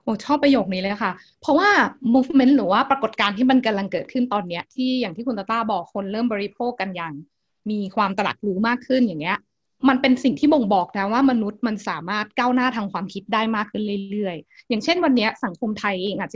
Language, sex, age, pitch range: Thai, female, 20-39, 200-255 Hz